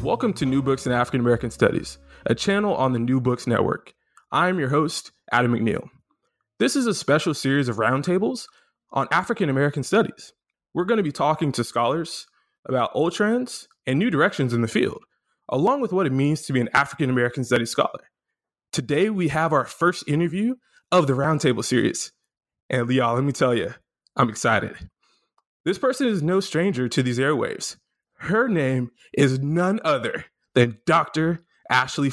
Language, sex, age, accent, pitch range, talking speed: English, male, 20-39, American, 130-195 Hz, 170 wpm